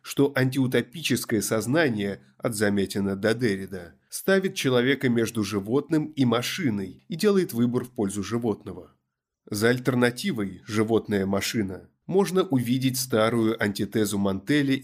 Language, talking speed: Russian, 115 wpm